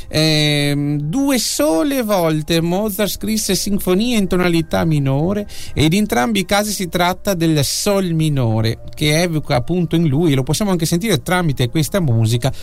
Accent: native